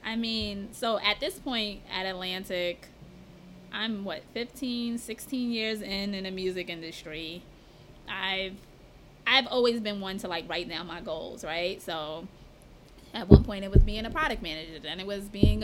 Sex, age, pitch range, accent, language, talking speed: female, 20-39, 180-225 Hz, American, English, 170 wpm